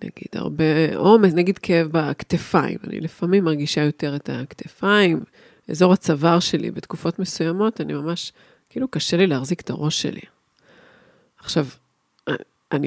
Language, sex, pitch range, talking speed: Hebrew, female, 155-195 Hz, 130 wpm